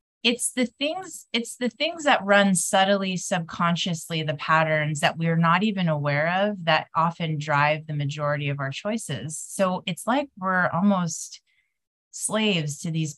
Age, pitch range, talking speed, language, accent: 30-49, 155-185 Hz, 155 wpm, English, American